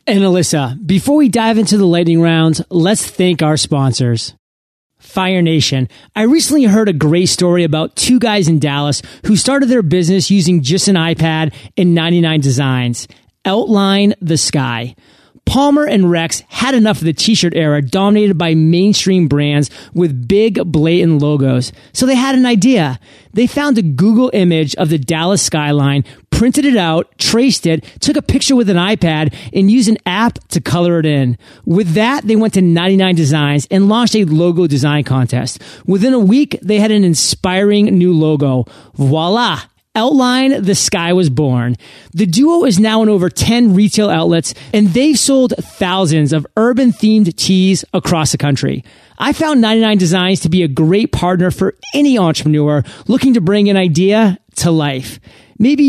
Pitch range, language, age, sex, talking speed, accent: 155-215 Hz, English, 30-49, male, 165 wpm, American